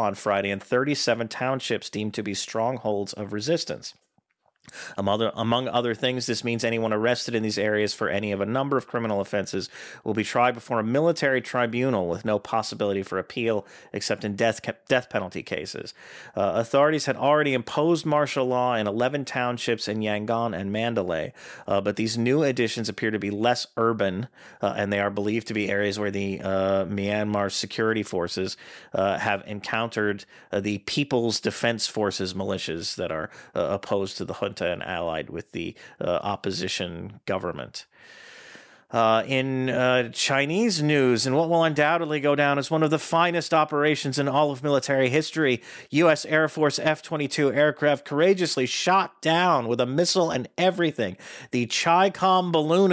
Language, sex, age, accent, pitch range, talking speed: English, male, 40-59, American, 105-145 Hz, 170 wpm